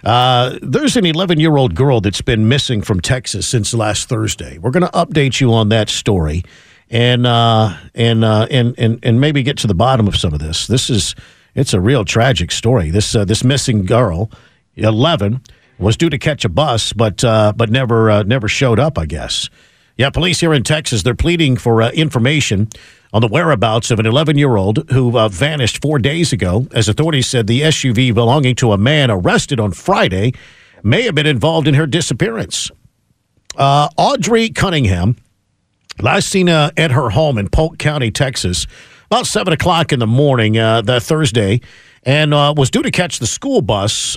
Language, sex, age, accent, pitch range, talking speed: English, male, 50-69, American, 110-150 Hz, 185 wpm